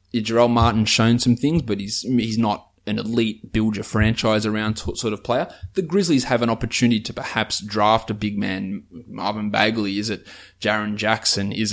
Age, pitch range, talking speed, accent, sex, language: 20-39, 105-130 Hz, 180 wpm, Australian, male, English